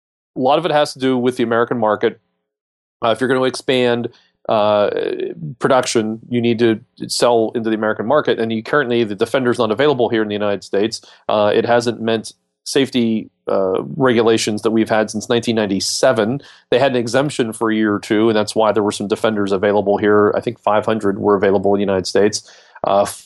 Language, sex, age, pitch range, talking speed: English, male, 40-59, 105-120 Hz, 205 wpm